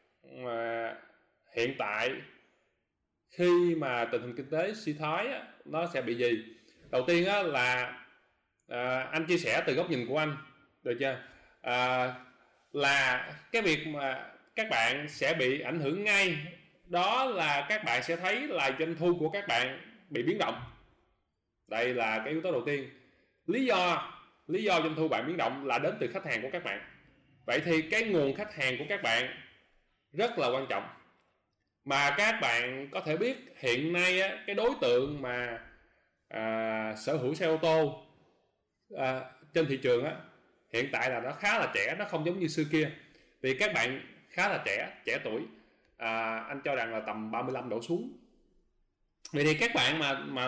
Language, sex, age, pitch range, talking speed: Vietnamese, male, 20-39, 125-165 Hz, 180 wpm